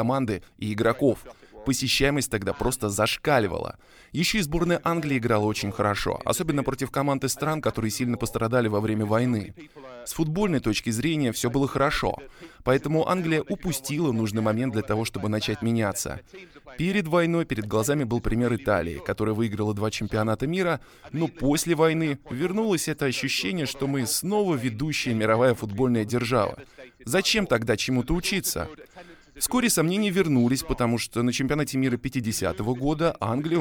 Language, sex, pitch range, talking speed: Russian, male, 110-150 Hz, 145 wpm